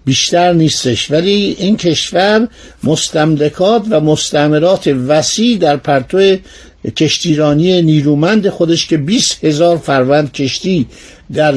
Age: 60-79